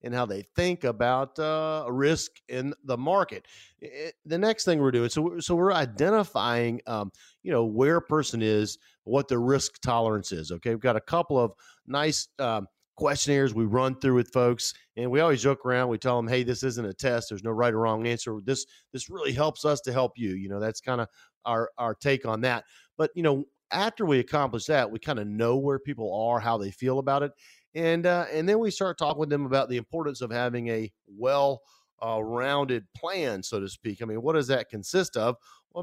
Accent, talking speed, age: American, 220 wpm, 40-59